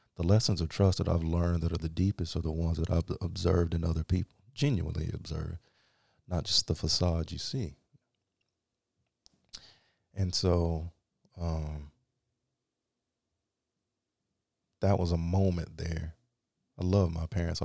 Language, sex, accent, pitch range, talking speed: English, male, American, 80-95 Hz, 135 wpm